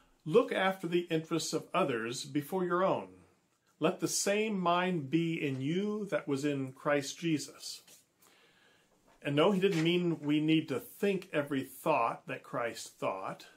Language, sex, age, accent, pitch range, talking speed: English, male, 40-59, American, 140-170 Hz, 155 wpm